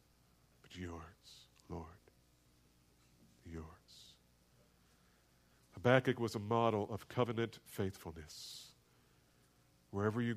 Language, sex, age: English, male, 50-69